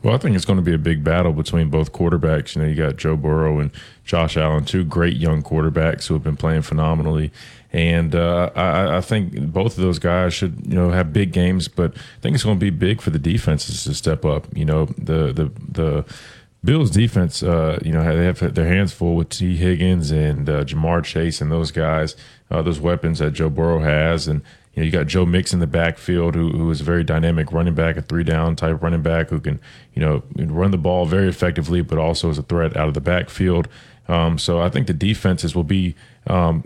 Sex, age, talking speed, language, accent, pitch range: male, 30-49, 230 wpm, English, American, 80-95 Hz